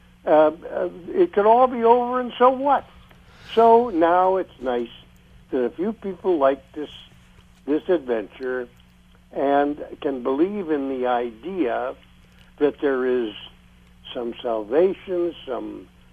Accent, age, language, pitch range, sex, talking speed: American, 60-79, English, 115-180 Hz, male, 125 wpm